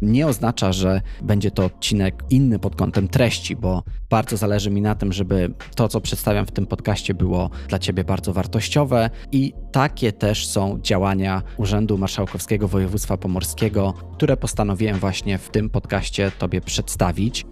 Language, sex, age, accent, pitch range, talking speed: Polish, male, 20-39, native, 95-115 Hz, 155 wpm